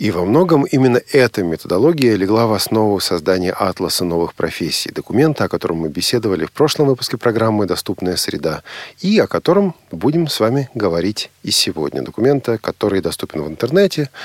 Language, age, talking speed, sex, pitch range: Russian, 40-59, 160 wpm, male, 105-150 Hz